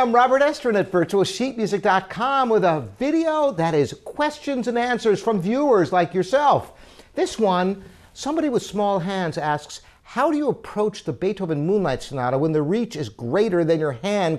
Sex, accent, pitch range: male, American, 155-215 Hz